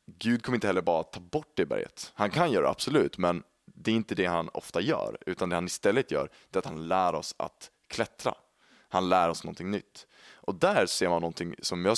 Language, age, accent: Swedish, 20-39, native